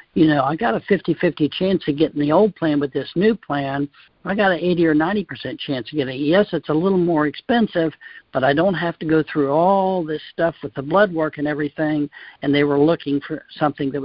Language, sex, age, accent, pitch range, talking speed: English, male, 60-79, American, 145-170 Hz, 240 wpm